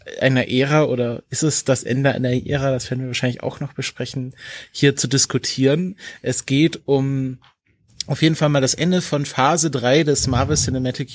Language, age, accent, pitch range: German, 30-49, German, 125-145 Hz